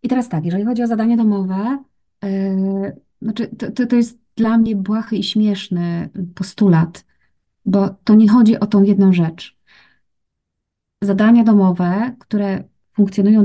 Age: 30-49